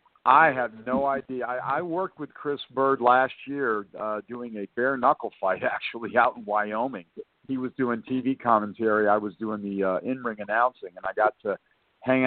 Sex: male